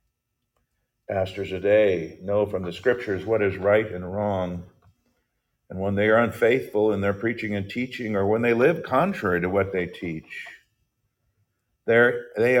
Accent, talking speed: American, 150 wpm